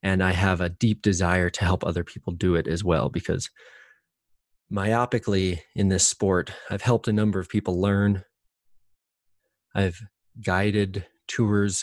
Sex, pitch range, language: male, 95-105 Hz, English